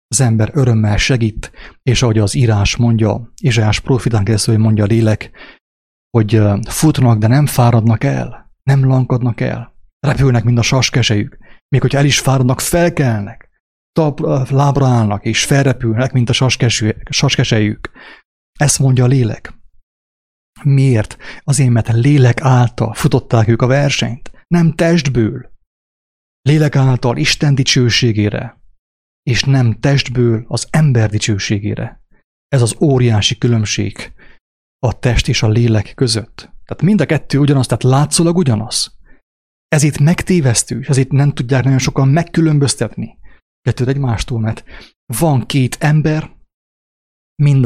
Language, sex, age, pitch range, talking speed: English, male, 30-49, 110-140 Hz, 125 wpm